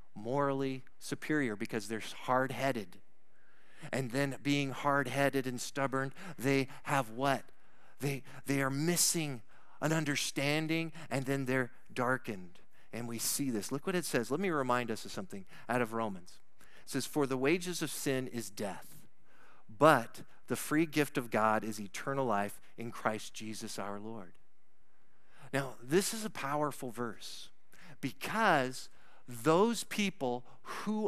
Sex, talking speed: male, 145 wpm